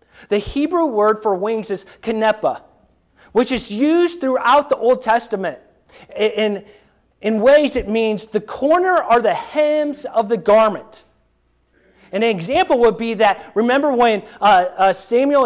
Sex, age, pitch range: male, 30-49, 205-250 Hz